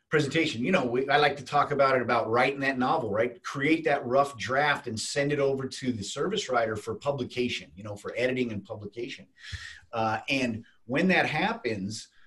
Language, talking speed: English, 190 wpm